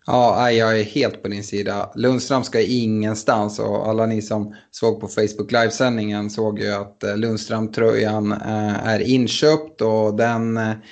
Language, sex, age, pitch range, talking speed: Swedish, male, 30-49, 110-135 Hz, 150 wpm